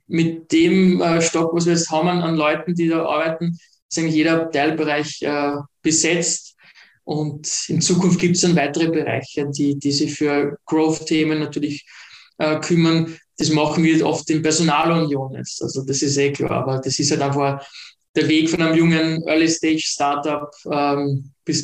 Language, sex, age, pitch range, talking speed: German, male, 20-39, 145-165 Hz, 165 wpm